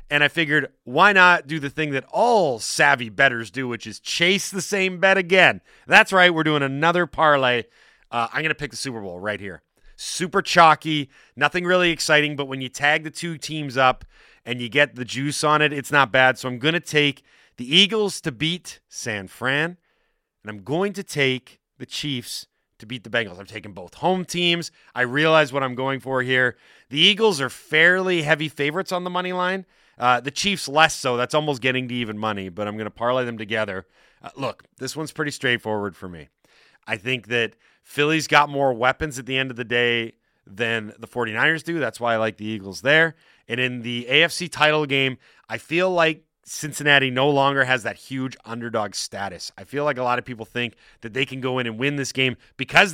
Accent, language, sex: American, English, male